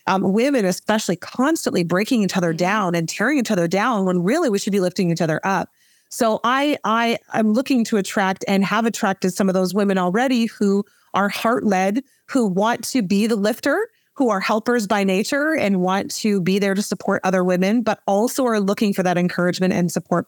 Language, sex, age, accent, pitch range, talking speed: English, female, 30-49, American, 190-245 Hz, 200 wpm